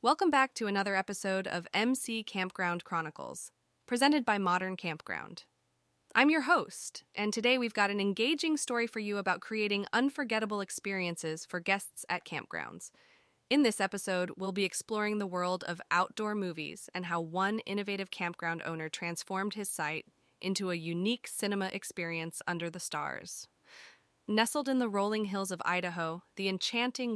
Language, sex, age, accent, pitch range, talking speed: English, female, 20-39, American, 175-220 Hz, 155 wpm